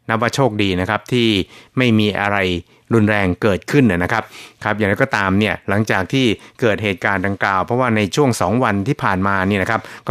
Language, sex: Thai, male